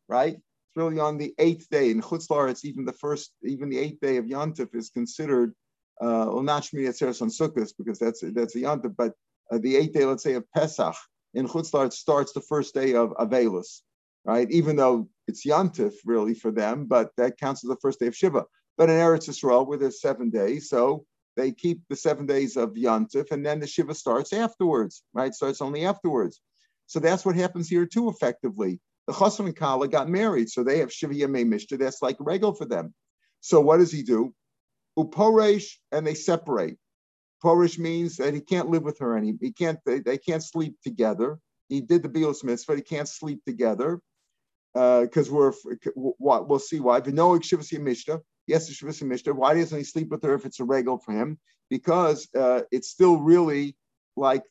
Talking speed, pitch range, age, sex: 200 wpm, 130-165 Hz, 50-69, male